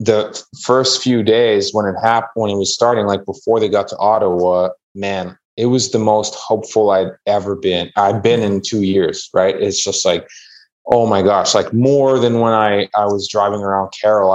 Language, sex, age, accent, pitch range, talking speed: English, male, 20-39, American, 95-115 Hz, 200 wpm